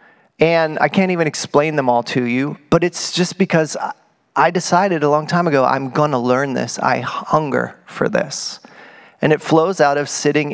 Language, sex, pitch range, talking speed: English, male, 150-195 Hz, 195 wpm